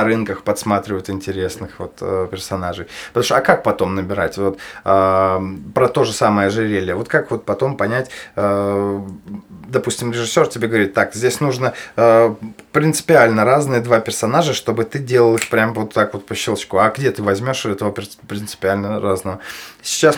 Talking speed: 150 wpm